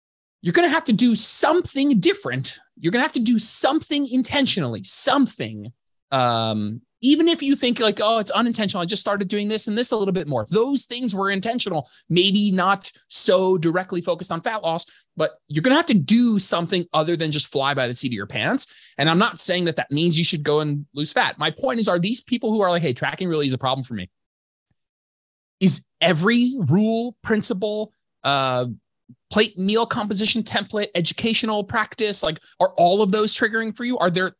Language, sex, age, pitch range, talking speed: English, male, 20-39, 140-225 Hz, 205 wpm